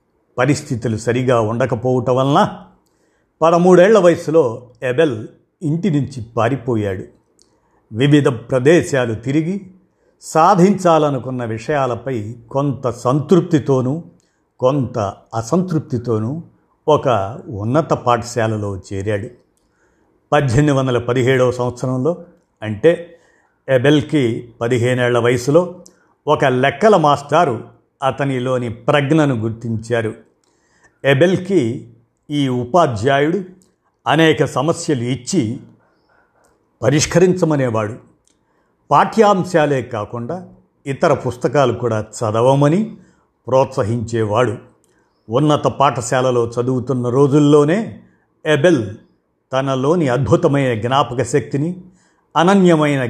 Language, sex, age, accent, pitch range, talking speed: Telugu, male, 50-69, native, 120-155 Hz, 65 wpm